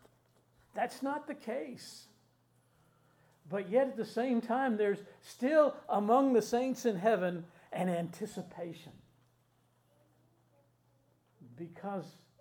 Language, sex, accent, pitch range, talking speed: English, male, American, 165-225 Hz, 95 wpm